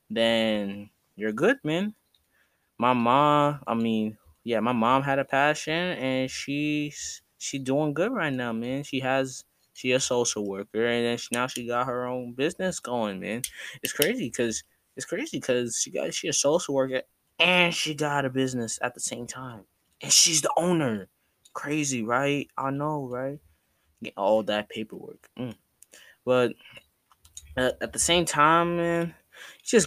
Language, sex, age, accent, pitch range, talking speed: English, male, 10-29, American, 105-135 Hz, 165 wpm